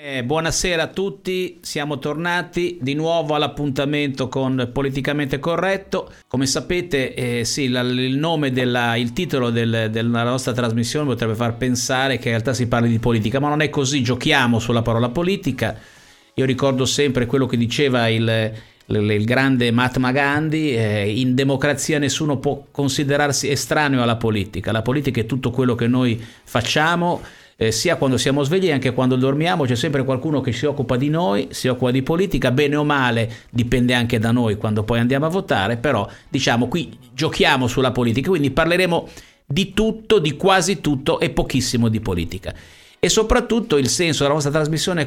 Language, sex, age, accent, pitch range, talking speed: Italian, male, 50-69, native, 120-150 Hz, 170 wpm